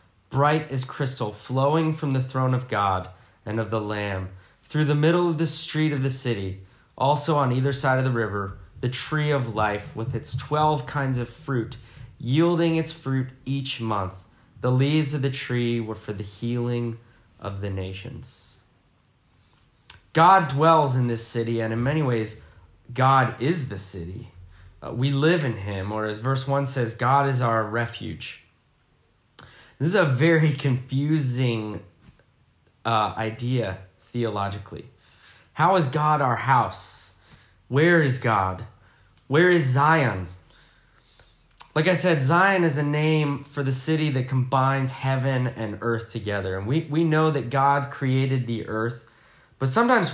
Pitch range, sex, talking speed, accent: 110-145 Hz, male, 155 wpm, American